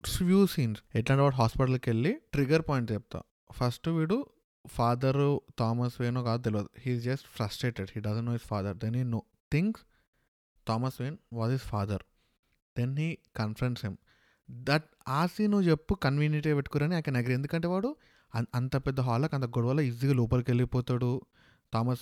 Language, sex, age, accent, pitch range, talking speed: Telugu, male, 20-39, native, 115-150 Hz, 155 wpm